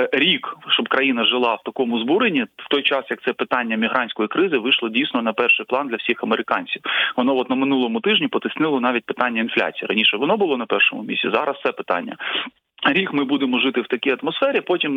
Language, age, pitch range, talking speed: Ukrainian, 20-39, 115-145 Hz, 195 wpm